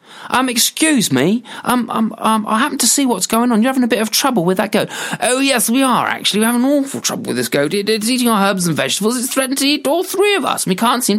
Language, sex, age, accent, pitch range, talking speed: English, male, 30-49, British, 205-275 Hz, 275 wpm